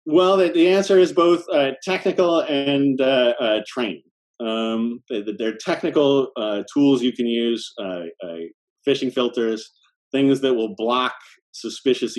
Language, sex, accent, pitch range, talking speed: English, male, American, 95-130 Hz, 140 wpm